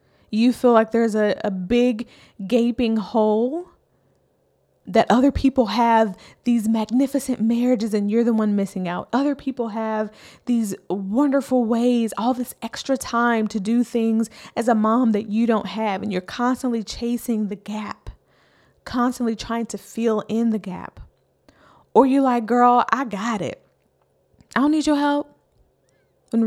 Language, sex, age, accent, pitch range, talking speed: English, female, 20-39, American, 215-245 Hz, 155 wpm